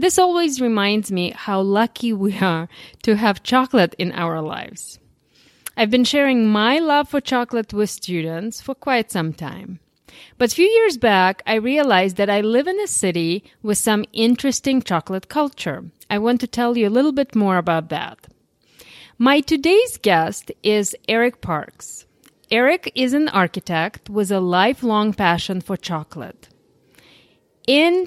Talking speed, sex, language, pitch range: 155 wpm, female, English, 190-260 Hz